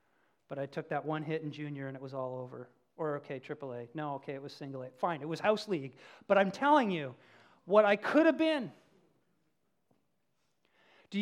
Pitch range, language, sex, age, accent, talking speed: 170-255 Hz, English, male, 40-59, American, 205 wpm